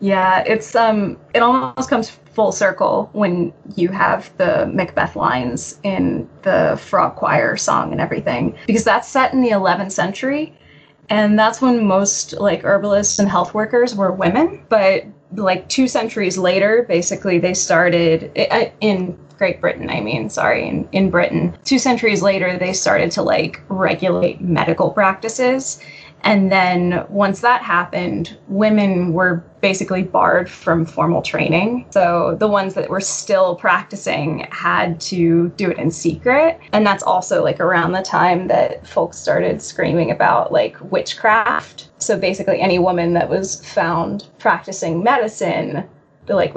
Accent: American